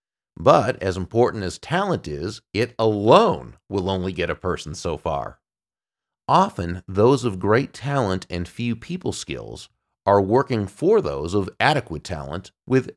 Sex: male